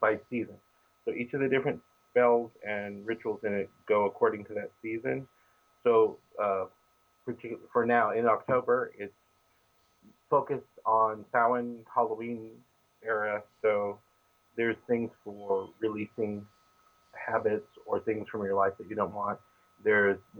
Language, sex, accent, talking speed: English, male, American, 130 wpm